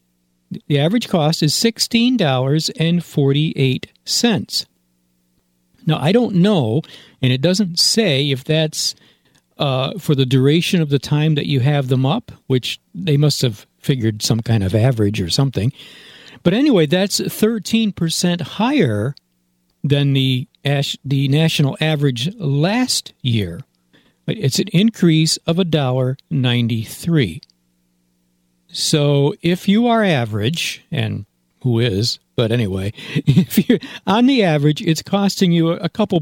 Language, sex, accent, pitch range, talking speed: English, male, American, 115-165 Hz, 125 wpm